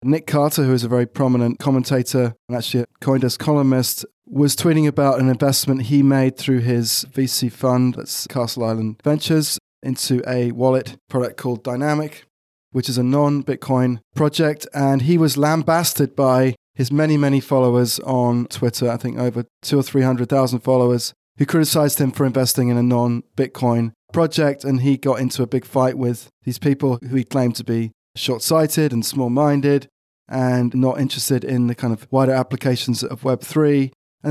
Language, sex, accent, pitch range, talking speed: English, male, British, 125-140 Hz, 170 wpm